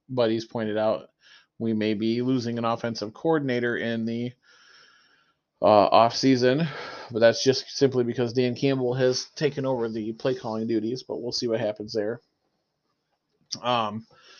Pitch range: 115-140 Hz